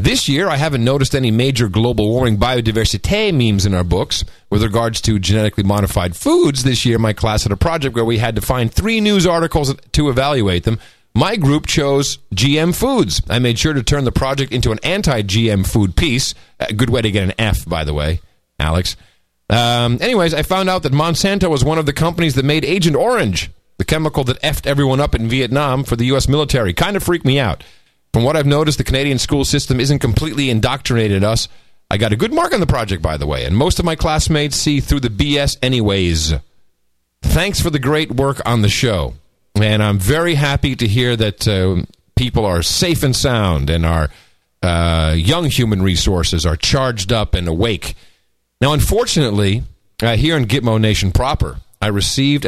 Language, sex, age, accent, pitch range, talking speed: English, male, 40-59, American, 100-140 Hz, 200 wpm